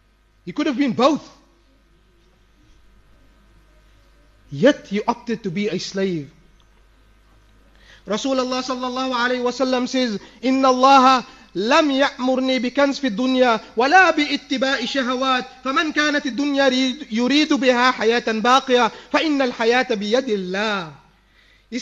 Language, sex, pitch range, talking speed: English, male, 230-290 Hz, 120 wpm